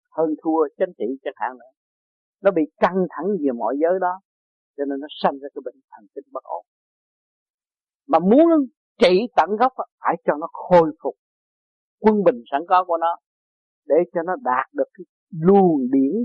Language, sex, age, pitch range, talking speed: Vietnamese, male, 50-69, 145-225 Hz, 190 wpm